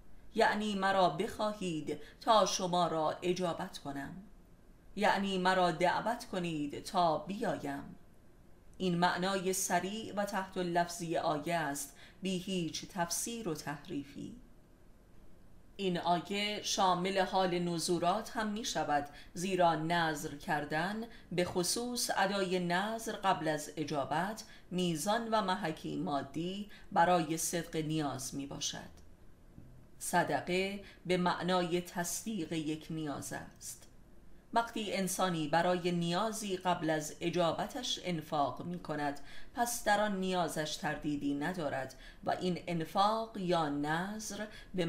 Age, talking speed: 30-49, 110 wpm